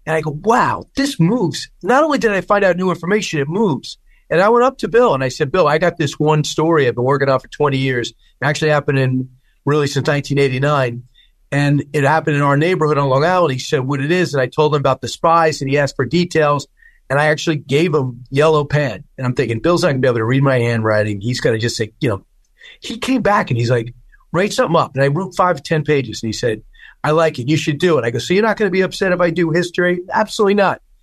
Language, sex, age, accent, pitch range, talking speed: English, male, 40-59, American, 140-180 Hz, 270 wpm